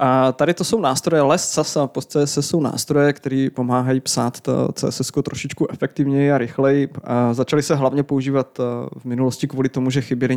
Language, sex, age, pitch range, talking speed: Czech, male, 20-39, 130-145 Hz, 175 wpm